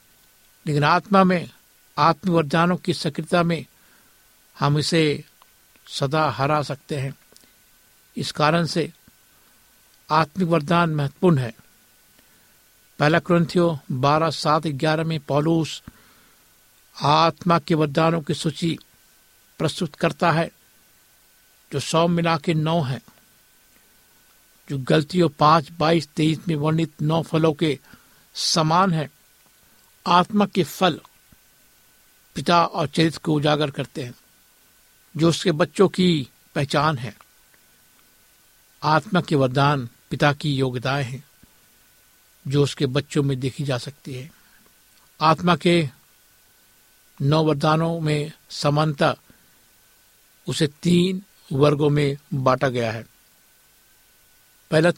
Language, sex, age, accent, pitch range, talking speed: Hindi, male, 60-79, native, 145-170 Hz, 110 wpm